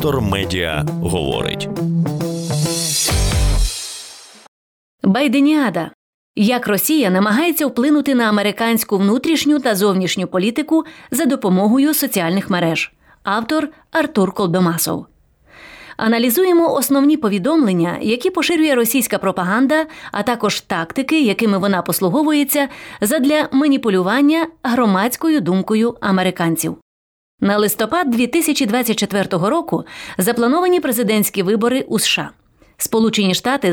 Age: 30-49